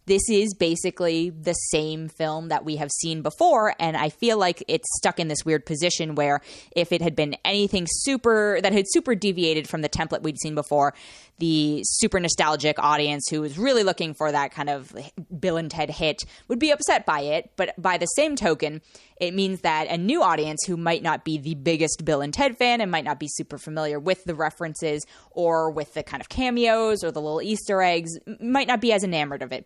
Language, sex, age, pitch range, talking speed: English, female, 20-39, 155-210 Hz, 215 wpm